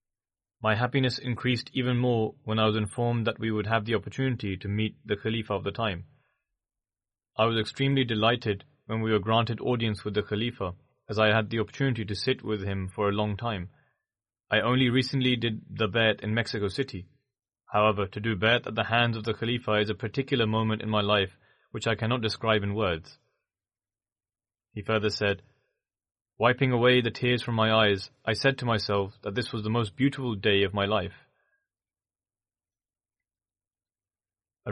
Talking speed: 180 wpm